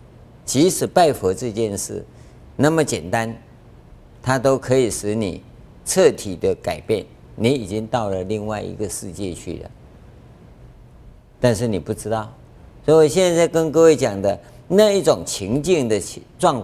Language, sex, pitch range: Chinese, male, 95-135 Hz